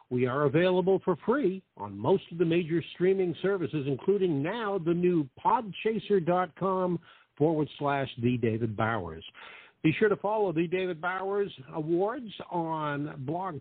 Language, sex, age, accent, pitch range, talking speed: English, male, 50-69, American, 135-185 Hz, 140 wpm